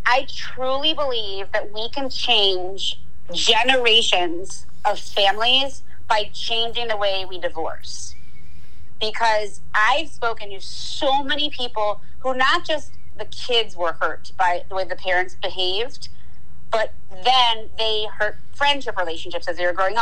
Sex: female